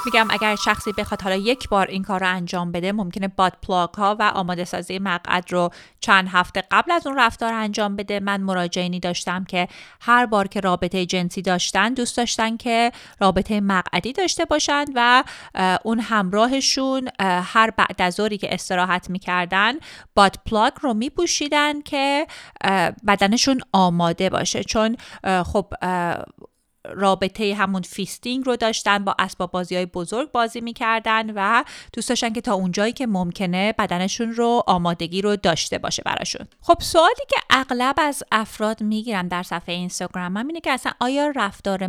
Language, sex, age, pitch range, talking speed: Persian, female, 30-49, 180-235 Hz, 150 wpm